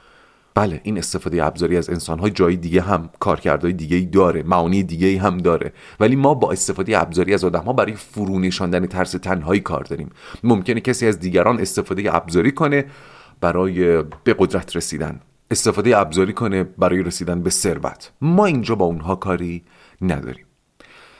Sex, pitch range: male, 90-125 Hz